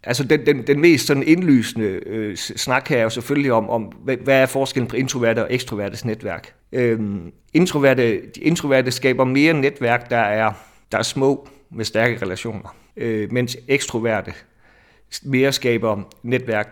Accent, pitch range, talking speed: native, 115-145 Hz, 160 wpm